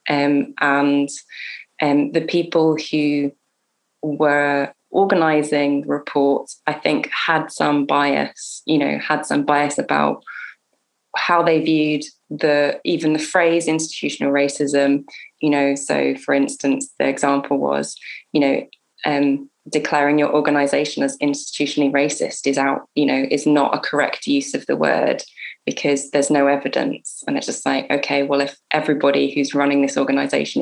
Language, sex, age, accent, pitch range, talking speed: English, female, 20-39, British, 140-155 Hz, 145 wpm